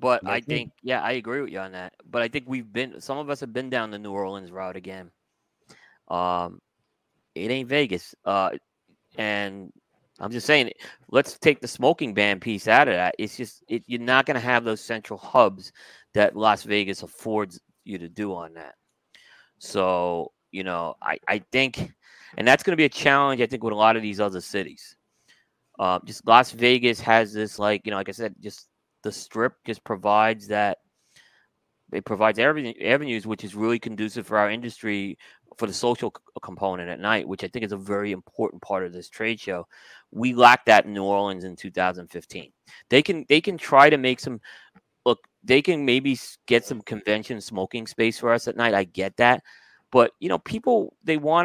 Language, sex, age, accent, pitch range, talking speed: English, male, 20-39, American, 100-125 Hz, 200 wpm